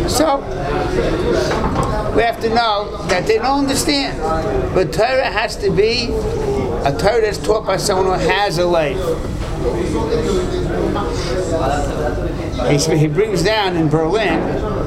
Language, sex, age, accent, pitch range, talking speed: English, male, 60-79, American, 155-230 Hz, 120 wpm